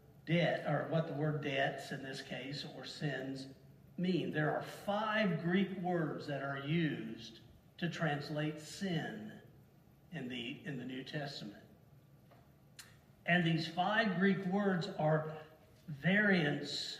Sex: male